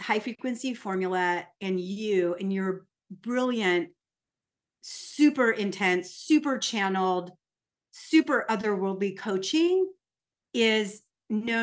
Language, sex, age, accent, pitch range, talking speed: English, female, 30-49, American, 200-255 Hz, 90 wpm